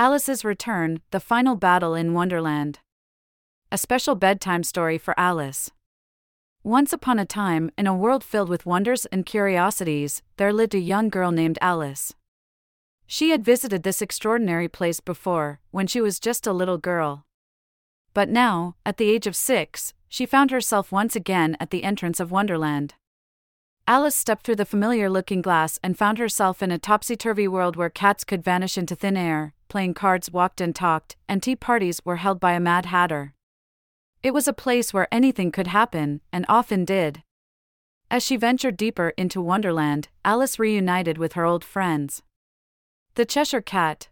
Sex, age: female, 30-49